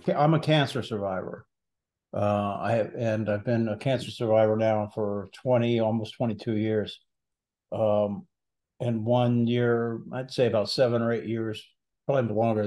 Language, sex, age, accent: English, male, 50-69, American